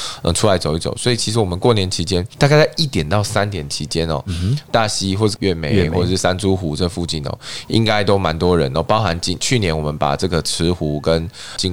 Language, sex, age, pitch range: Chinese, male, 20-39, 80-105 Hz